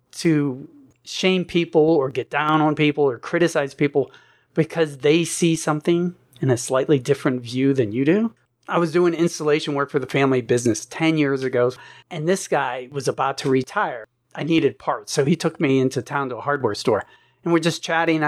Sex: male